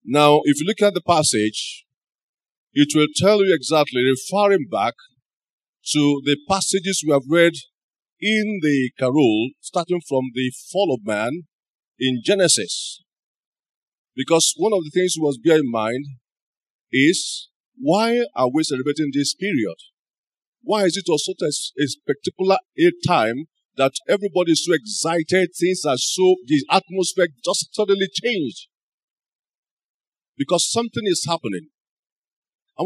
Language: English